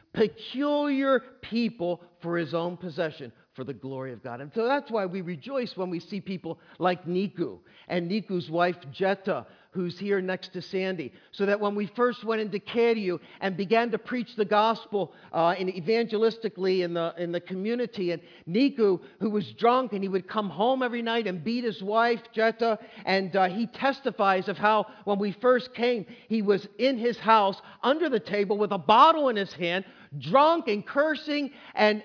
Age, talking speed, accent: 50-69, 185 wpm, American